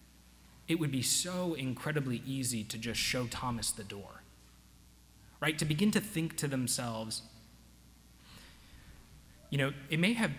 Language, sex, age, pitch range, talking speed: English, male, 30-49, 100-140 Hz, 140 wpm